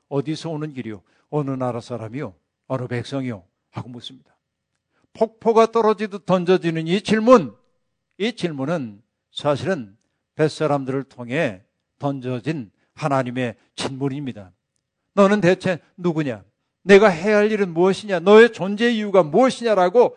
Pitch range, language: 135-190 Hz, Korean